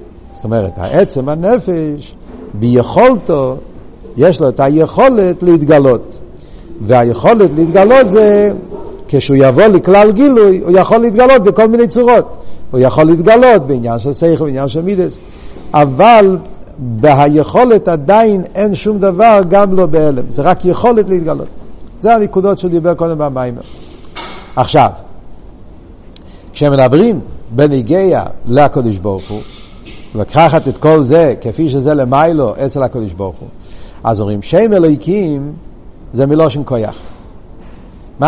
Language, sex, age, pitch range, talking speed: Hebrew, male, 60-79, 125-180 Hz, 120 wpm